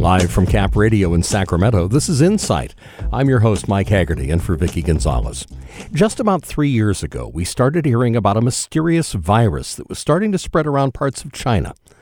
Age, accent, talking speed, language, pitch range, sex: 50-69, American, 195 wpm, English, 95-140 Hz, male